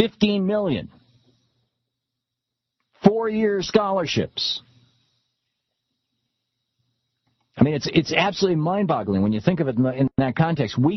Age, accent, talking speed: 50-69, American, 105 wpm